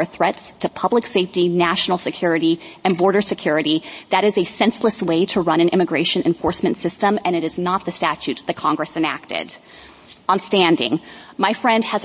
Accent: American